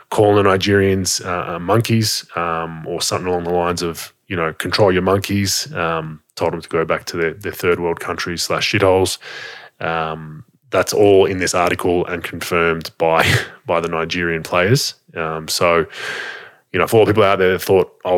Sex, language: male, English